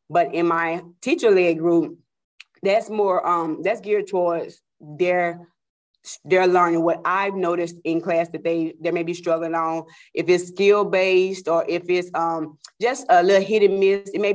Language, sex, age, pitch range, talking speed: English, female, 20-39, 170-195 Hz, 175 wpm